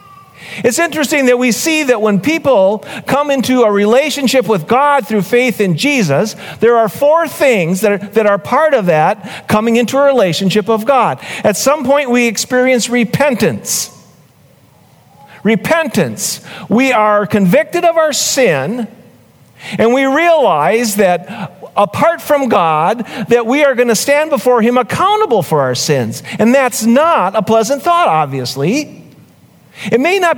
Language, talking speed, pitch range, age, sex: English, 150 wpm, 190-265 Hz, 50-69, male